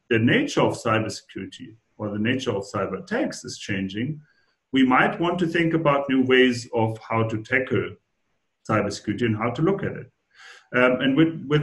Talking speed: 180 wpm